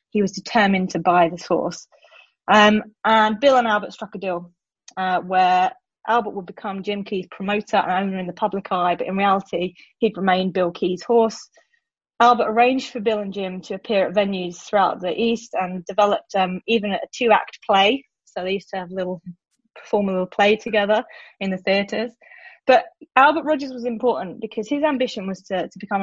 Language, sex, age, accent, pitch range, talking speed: English, female, 20-39, British, 190-240 Hz, 195 wpm